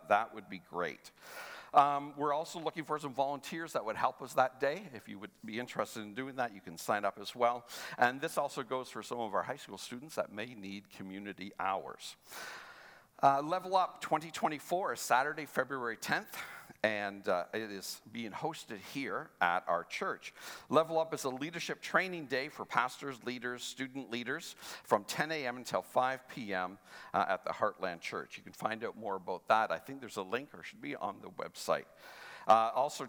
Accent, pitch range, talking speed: American, 110-155 Hz, 200 wpm